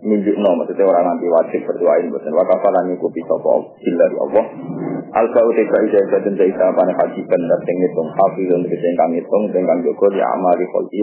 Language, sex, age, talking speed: Indonesian, male, 30-49, 200 wpm